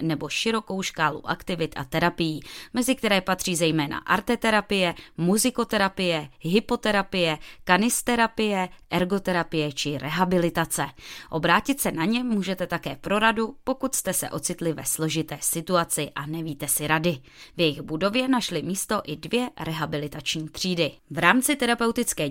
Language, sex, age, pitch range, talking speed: Czech, female, 20-39, 155-205 Hz, 130 wpm